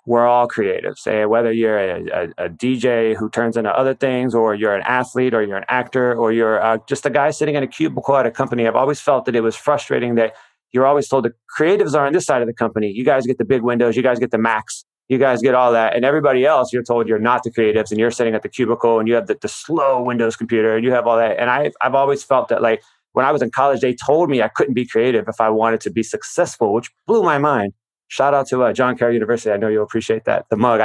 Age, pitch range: 30-49, 115-140 Hz